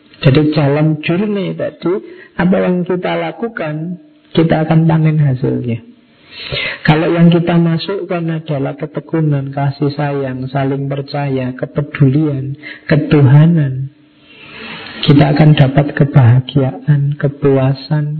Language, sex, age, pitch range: Indonesian, male, 50-69, 140-160 Hz